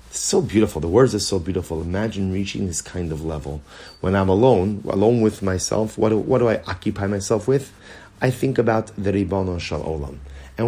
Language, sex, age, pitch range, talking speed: English, male, 30-49, 100-130 Hz, 195 wpm